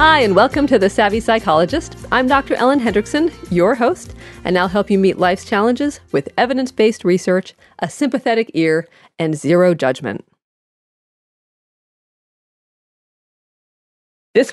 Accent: American